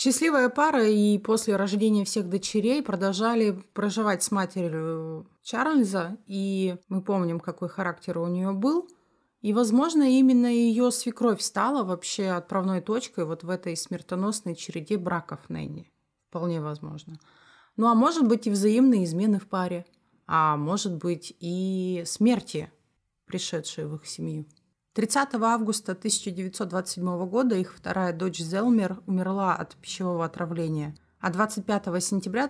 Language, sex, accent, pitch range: Russian, female, native, 170-220 Hz